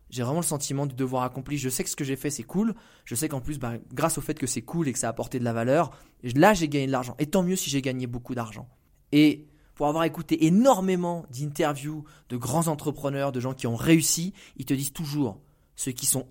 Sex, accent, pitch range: male, French, 130-175 Hz